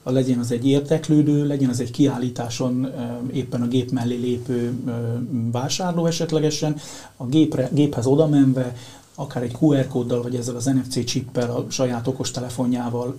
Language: Hungarian